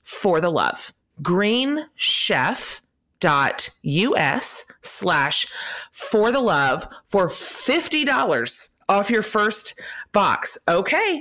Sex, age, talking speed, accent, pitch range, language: female, 30-49, 80 wpm, American, 180-255 Hz, English